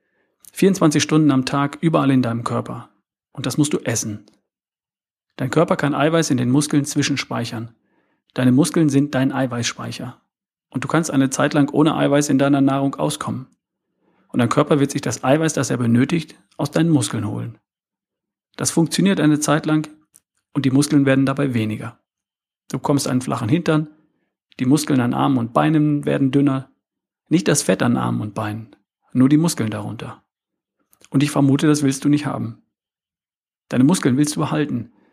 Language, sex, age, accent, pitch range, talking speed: German, male, 40-59, German, 125-150 Hz, 170 wpm